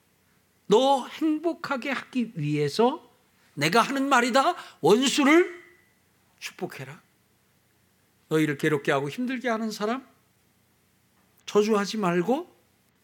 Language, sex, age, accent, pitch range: Korean, male, 60-79, native, 150-230 Hz